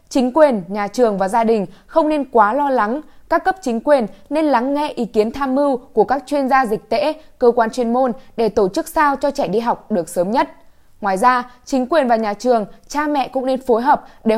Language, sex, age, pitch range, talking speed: Vietnamese, female, 10-29, 215-280 Hz, 240 wpm